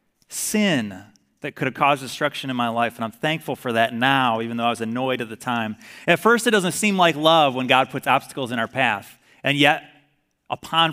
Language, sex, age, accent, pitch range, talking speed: English, male, 30-49, American, 140-215 Hz, 220 wpm